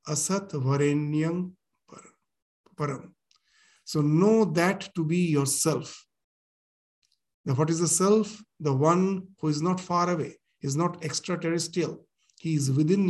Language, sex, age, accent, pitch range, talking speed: English, male, 50-69, Indian, 155-185 Hz, 125 wpm